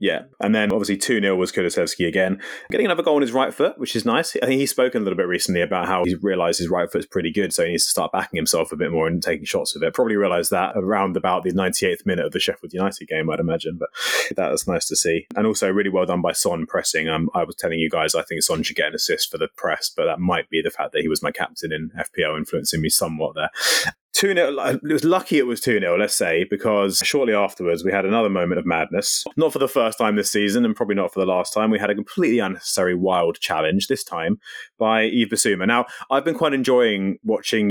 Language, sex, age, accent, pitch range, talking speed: English, male, 30-49, British, 95-145 Hz, 260 wpm